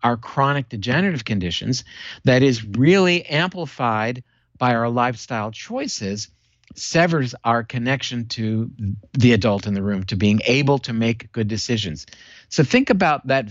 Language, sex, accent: English, male, American